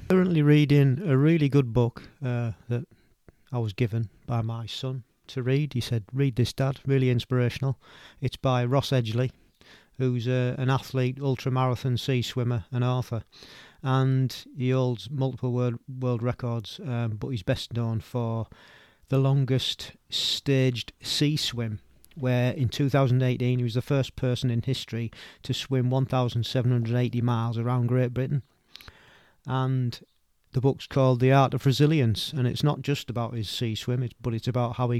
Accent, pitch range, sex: British, 120-135 Hz, male